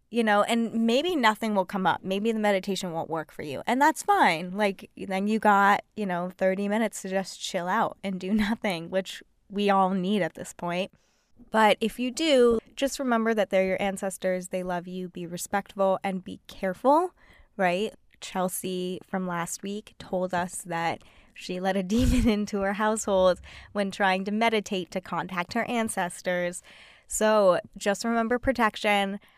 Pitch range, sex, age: 180-220 Hz, female, 20-39